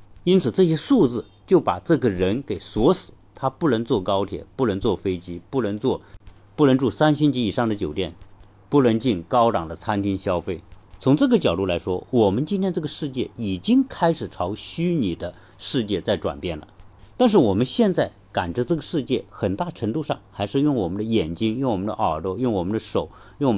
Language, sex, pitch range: Chinese, male, 95-140 Hz